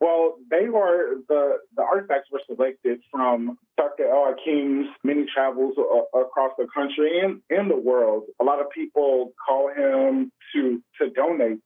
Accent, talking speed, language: American, 160 wpm, English